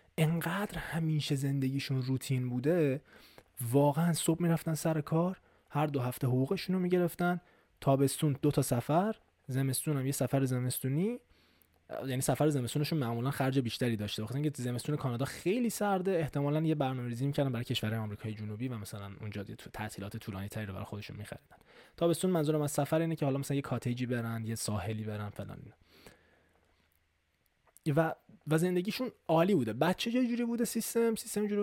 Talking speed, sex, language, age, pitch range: 155 wpm, male, Persian, 20-39, 110-160 Hz